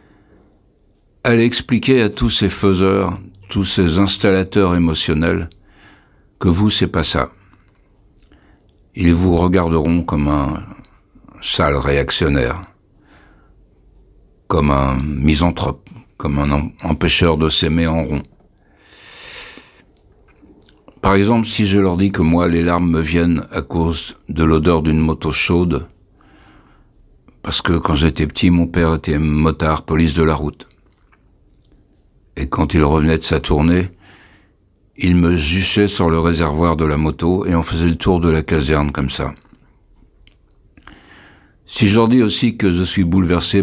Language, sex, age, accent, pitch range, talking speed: French, male, 60-79, French, 80-95 Hz, 135 wpm